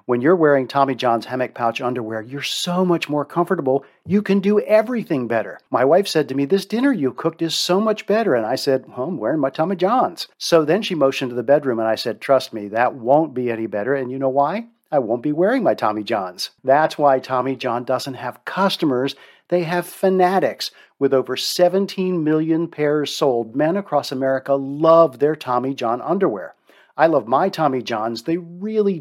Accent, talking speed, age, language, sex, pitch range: American, 205 wpm, 50-69, English, male, 130-170 Hz